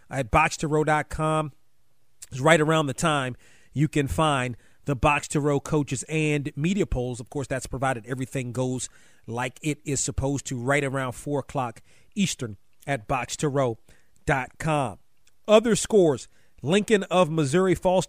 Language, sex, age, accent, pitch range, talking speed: English, male, 40-59, American, 140-180 Hz, 140 wpm